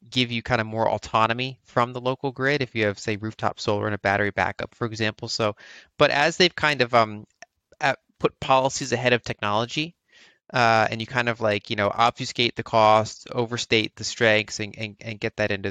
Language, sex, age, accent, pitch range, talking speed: English, male, 30-49, American, 105-120 Hz, 205 wpm